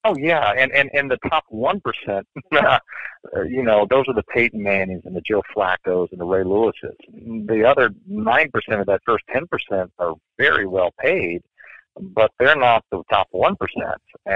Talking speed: 165 wpm